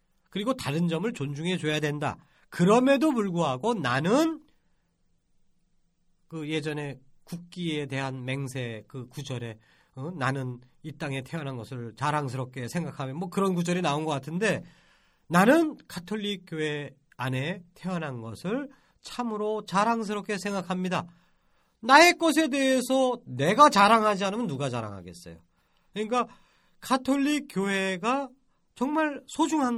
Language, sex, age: Korean, male, 40-59